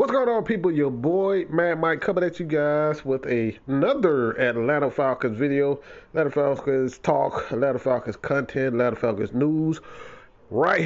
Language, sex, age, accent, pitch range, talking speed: English, male, 30-49, American, 110-145 Hz, 150 wpm